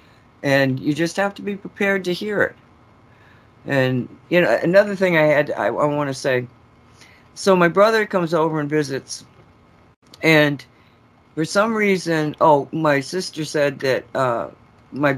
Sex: female